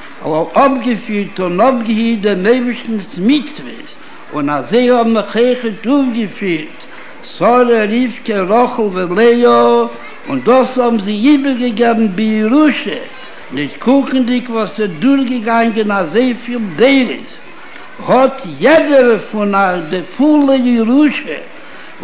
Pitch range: 205-255 Hz